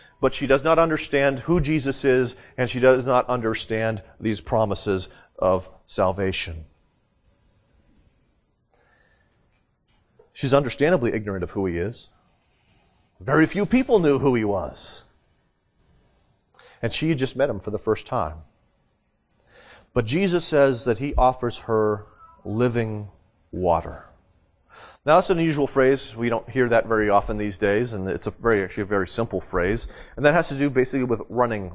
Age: 40-59